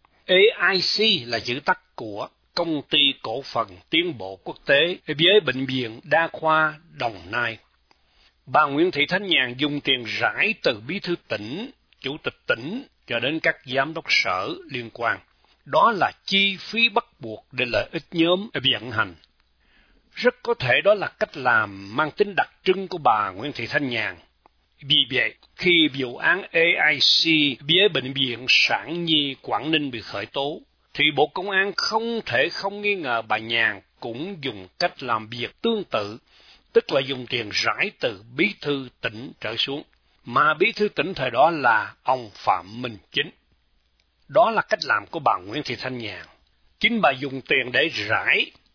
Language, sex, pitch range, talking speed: Vietnamese, male, 120-185 Hz, 175 wpm